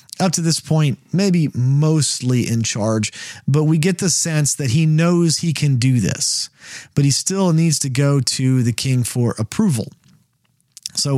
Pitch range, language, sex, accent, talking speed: 125-165 Hz, English, male, American, 170 wpm